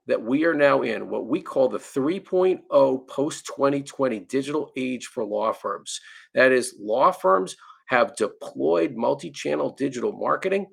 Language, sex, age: English, male, 40-59